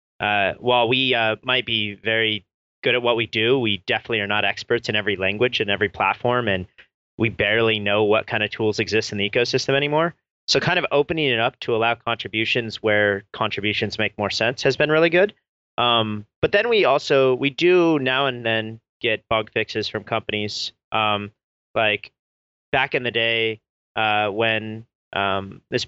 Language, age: English, 30-49